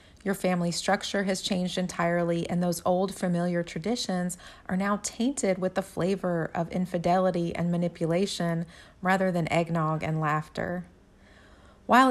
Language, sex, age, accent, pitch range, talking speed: English, female, 30-49, American, 170-205 Hz, 135 wpm